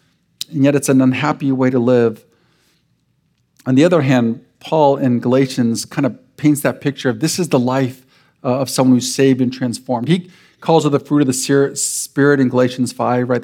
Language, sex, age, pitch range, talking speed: English, male, 50-69, 130-170 Hz, 190 wpm